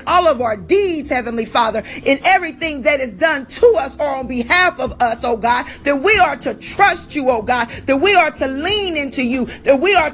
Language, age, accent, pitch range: English, 40-59, American, 255-345 Hz